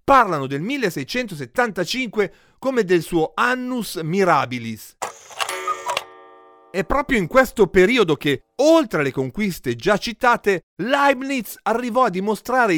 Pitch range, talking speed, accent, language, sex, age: 150-245 Hz, 110 wpm, native, Italian, male, 40-59